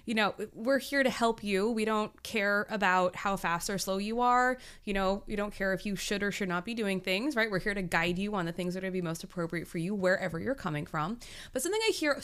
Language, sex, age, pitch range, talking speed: English, female, 20-39, 180-260 Hz, 280 wpm